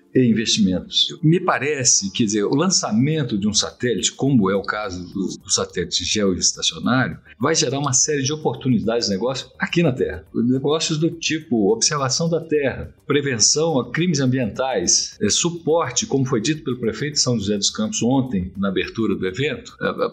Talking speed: 170 wpm